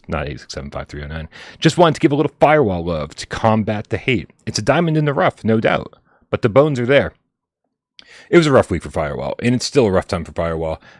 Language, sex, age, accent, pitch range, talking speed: English, male, 30-49, American, 90-115 Hz, 260 wpm